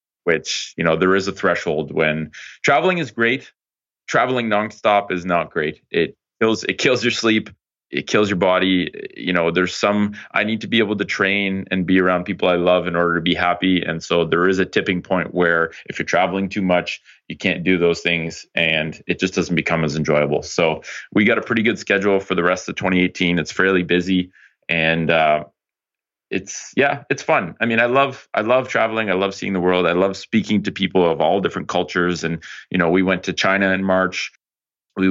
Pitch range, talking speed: 80-95 Hz, 215 wpm